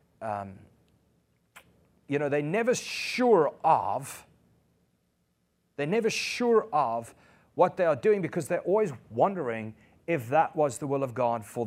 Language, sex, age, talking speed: English, male, 30-49, 140 wpm